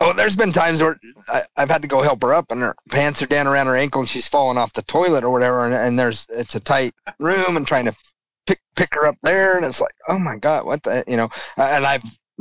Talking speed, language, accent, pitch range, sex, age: 265 wpm, English, American, 115-140 Hz, male, 30-49